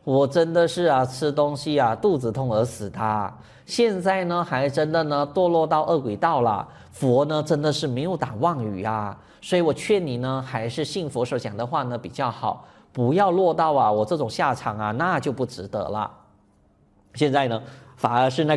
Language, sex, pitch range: Chinese, male, 115-175 Hz